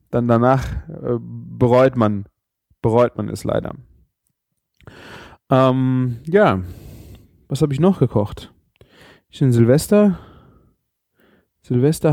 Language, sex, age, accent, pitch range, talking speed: German, male, 20-39, German, 110-145 Hz, 95 wpm